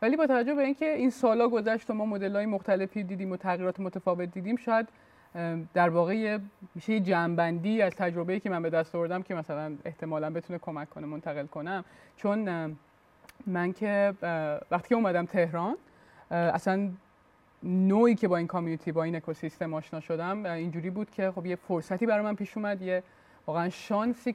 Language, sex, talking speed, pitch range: Persian, male, 170 wpm, 170-220 Hz